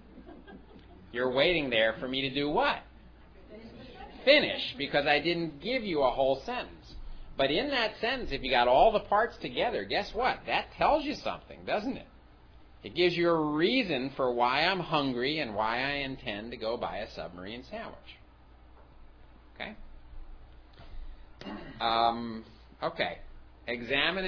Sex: male